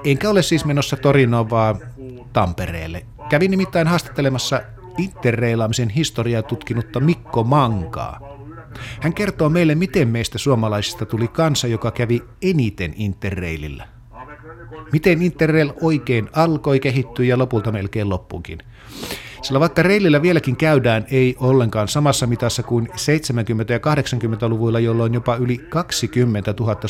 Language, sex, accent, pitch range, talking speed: Finnish, male, native, 115-145 Hz, 120 wpm